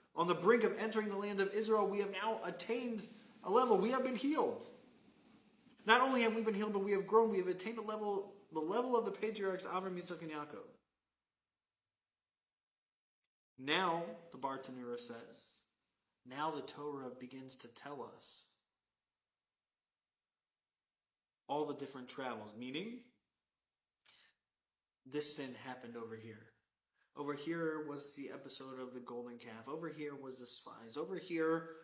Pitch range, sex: 135-195 Hz, male